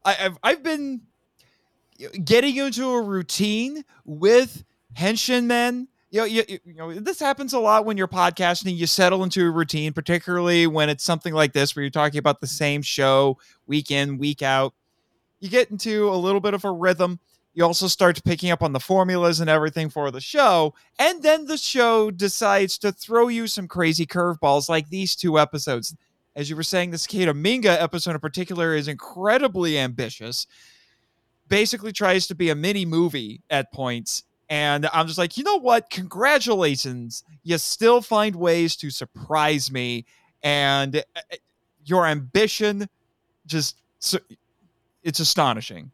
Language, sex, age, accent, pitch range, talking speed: English, male, 30-49, American, 145-195 Hz, 160 wpm